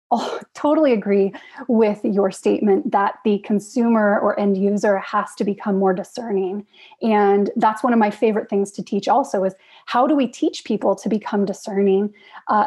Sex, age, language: female, 30-49, English